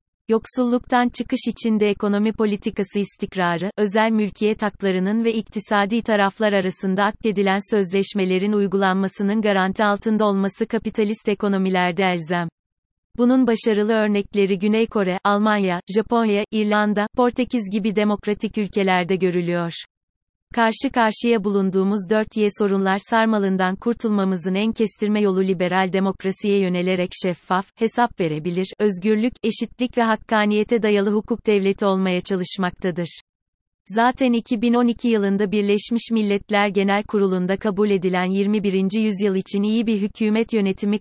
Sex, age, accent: female, 30-49, native